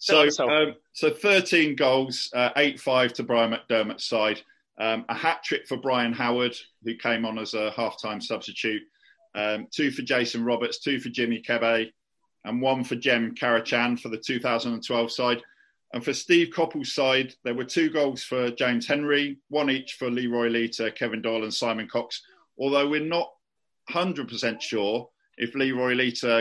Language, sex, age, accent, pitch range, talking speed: English, male, 40-59, British, 115-140 Hz, 165 wpm